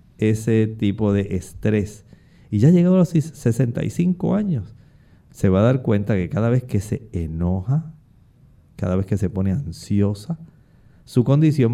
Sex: male